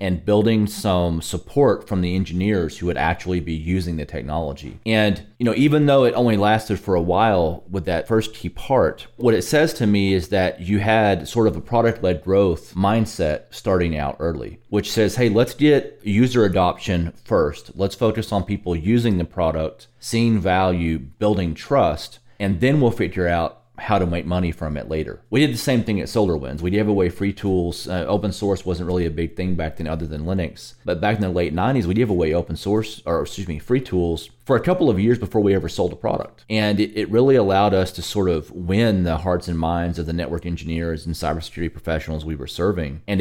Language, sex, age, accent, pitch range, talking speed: English, male, 30-49, American, 85-105 Hz, 215 wpm